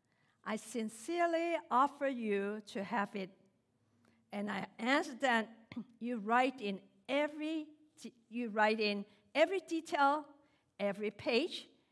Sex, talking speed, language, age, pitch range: female, 110 wpm, English, 50-69, 185-275 Hz